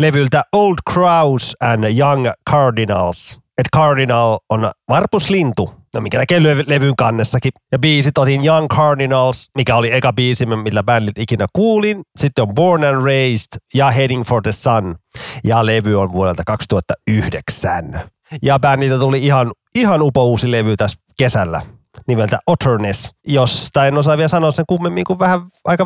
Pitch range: 115-150 Hz